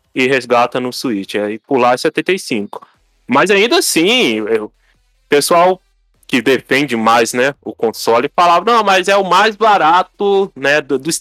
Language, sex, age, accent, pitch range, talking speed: Portuguese, male, 20-39, Brazilian, 115-185 Hz, 160 wpm